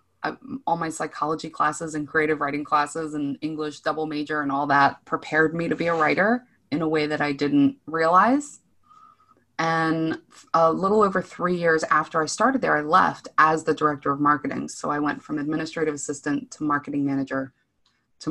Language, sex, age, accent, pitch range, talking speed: English, female, 20-39, American, 145-180 Hz, 180 wpm